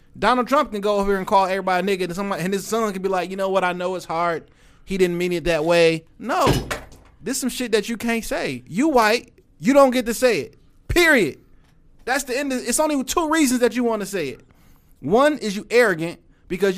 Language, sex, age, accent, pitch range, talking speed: English, male, 30-49, American, 165-245 Hz, 245 wpm